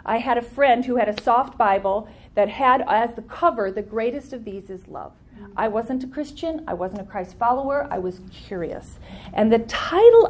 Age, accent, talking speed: 40-59, American, 205 wpm